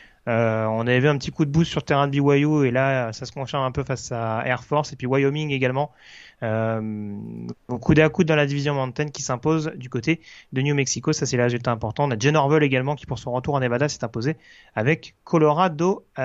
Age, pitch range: 30-49, 125-165 Hz